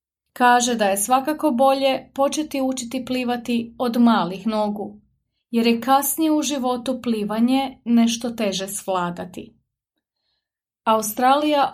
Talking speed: 105 wpm